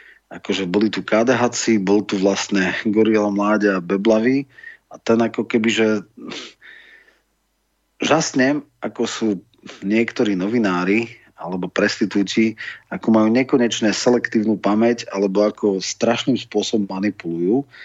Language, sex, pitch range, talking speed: Slovak, male, 100-120 Hz, 115 wpm